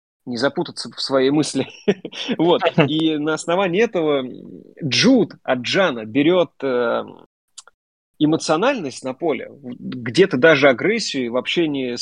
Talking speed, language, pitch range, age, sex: 100 wpm, Russian, 130-165 Hz, 20-39, male